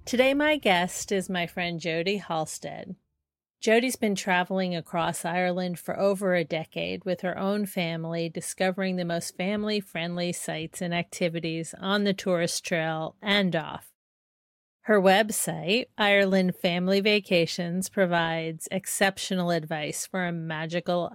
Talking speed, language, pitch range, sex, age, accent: 130 wpm, English, 170-195 Hz, female, 40-59, American